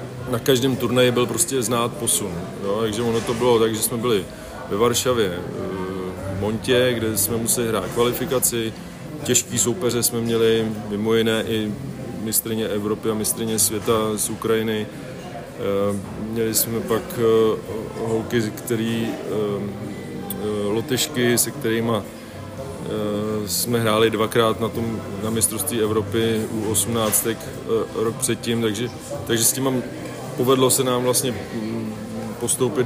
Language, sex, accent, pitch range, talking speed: Czech, male, native, 110-120 Hz, 125 wpm